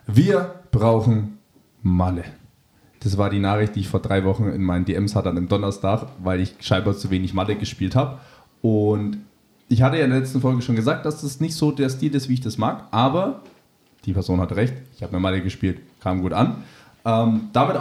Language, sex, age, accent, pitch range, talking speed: German, male, 20-39, German, 105-130 Hz, 210 wpm